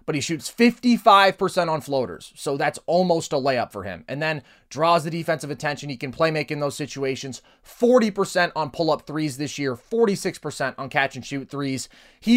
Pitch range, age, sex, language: 140-195 Hz, 30-49, male, English